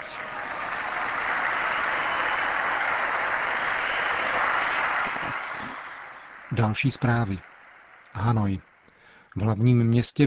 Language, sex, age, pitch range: Czech, male, 40-59, 105-115 Hz